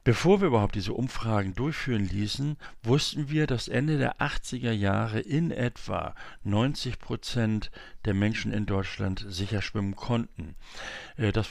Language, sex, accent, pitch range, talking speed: German, male, German, 100-125 Hz, 135 wpm